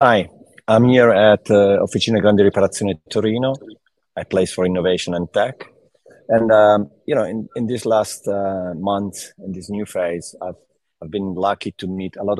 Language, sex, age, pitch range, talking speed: English, male, 30-49, 85-100 Hz, 180 wpm